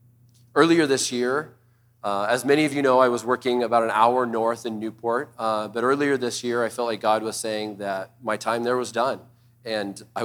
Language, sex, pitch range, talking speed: English, male, 110-120 Hz, 215 wpm